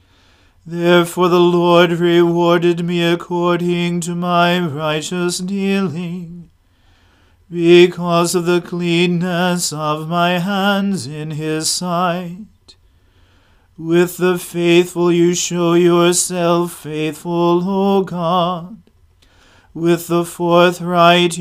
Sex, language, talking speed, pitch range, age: male, English, 90 wpm, 155-175 Hz, 40-59